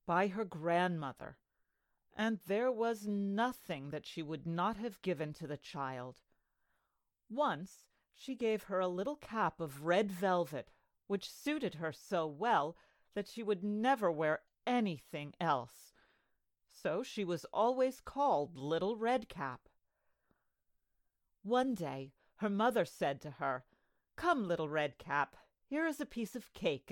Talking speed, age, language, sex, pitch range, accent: 140 wpm, 40-59, English, female, 165-235 Hz, American